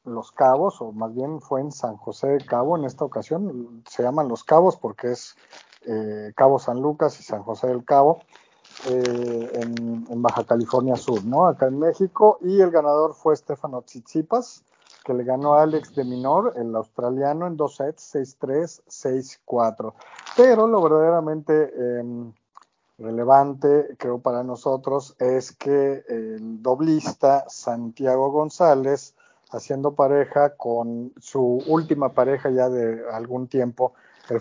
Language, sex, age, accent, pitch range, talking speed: Spanish, male, 50-69, Mexican, 125-155 Hz, 150 wpm